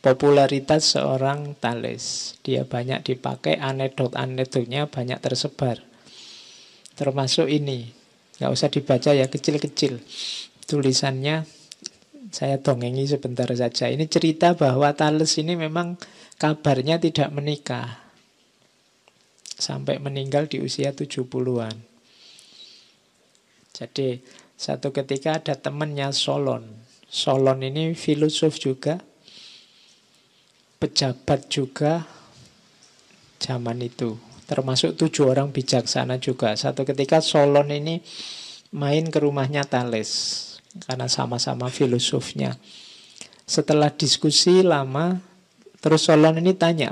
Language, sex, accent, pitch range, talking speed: Indonesian, male, native, 130-155 Hz, 90 wpm